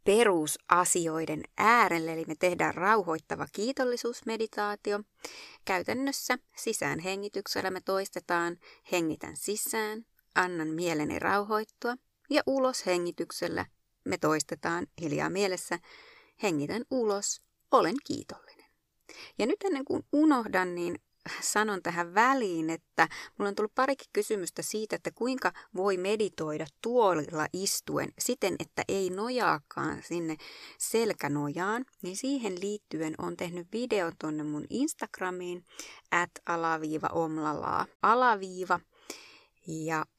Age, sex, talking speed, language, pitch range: 30-49, female, 105 wpm, Finnish, 165-235 Hz